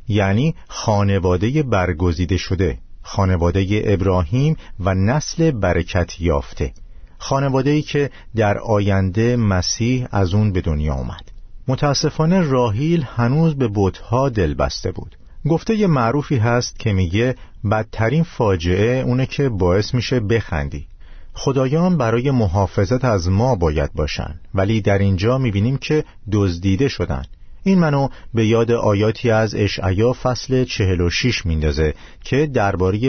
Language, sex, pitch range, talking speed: Persian, male, 90-125 Hz, 120 wpm